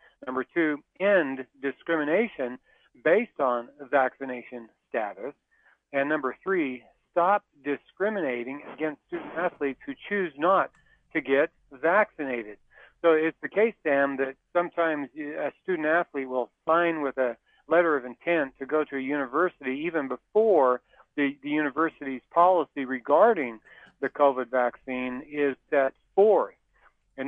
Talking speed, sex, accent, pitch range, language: 125 wpm, male, American, 130-165 Hz, English